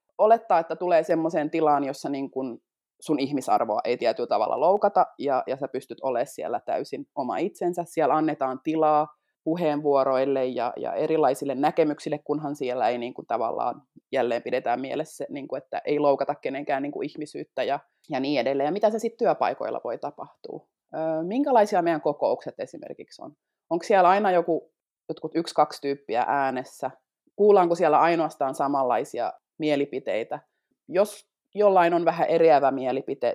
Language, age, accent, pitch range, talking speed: Finnish, 20-39, native, 145-180 Hz, 150 wpm